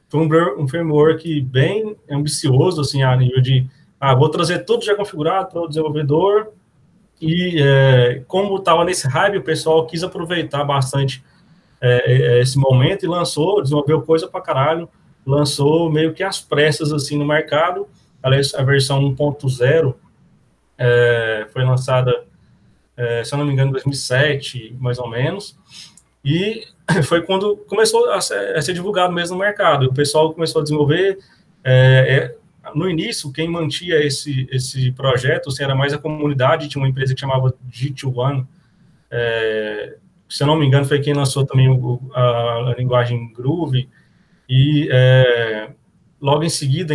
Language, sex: Portuguese, male